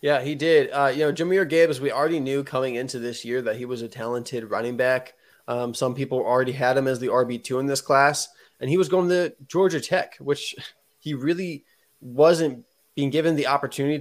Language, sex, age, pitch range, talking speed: English, male, 20-39, 125-150 Hz, 210 wpm